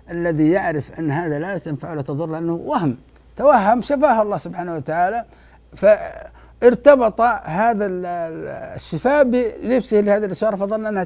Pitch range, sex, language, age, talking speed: 140-215 Hz, male, Arabic, 60-79, 125 wpm